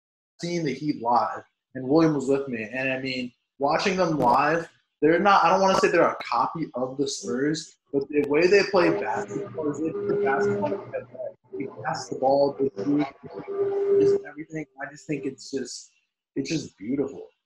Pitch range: 140-195 Hz